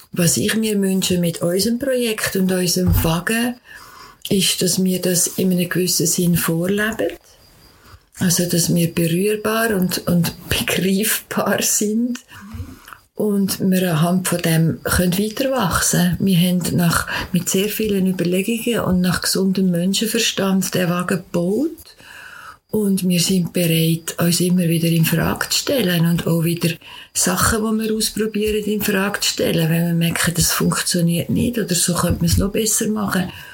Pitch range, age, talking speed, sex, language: 170-200 Hz, 50-69, 150 wpm, female, German